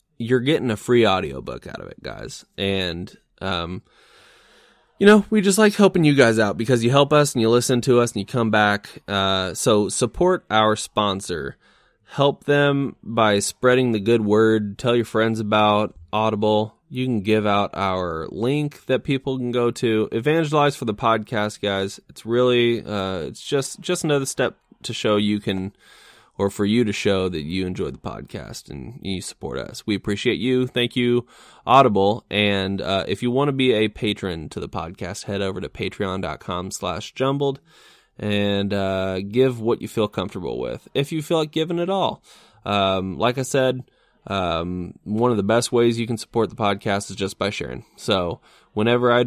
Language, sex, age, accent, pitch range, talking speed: English, male, 20-39, American, 100-125 Hz, 185 wpm